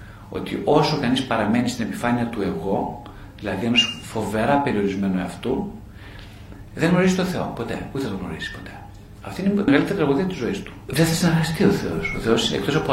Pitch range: 100-165 Hz